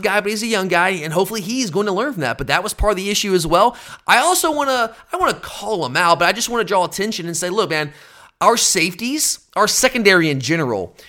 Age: 30-49